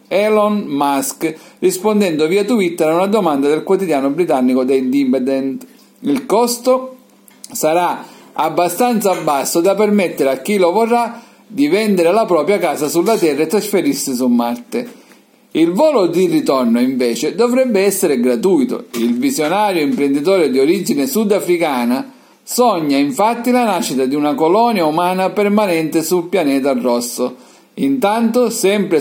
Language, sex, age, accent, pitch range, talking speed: Italian, male, 50-69, native, 150-225 Hz, 130 wpm